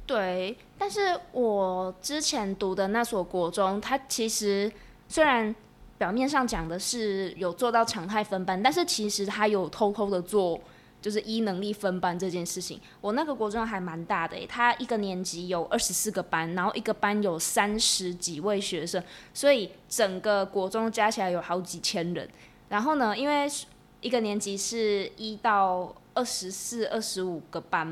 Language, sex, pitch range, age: Chinese, female, 185-225 Hz, 20-39